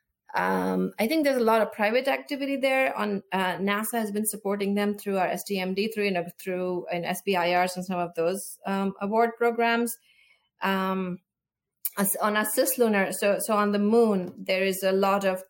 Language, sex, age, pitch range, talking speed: English, female, 30-49, 185-225 Hz, 180 wpm